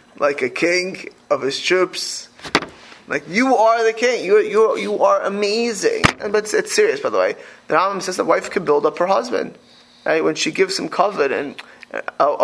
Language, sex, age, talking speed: English, male, 20-39, 205 wpm